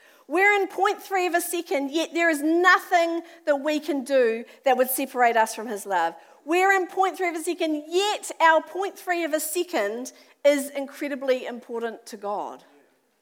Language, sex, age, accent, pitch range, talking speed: English, female, 50-69, Australian, 230-325 Hz, 170 wpm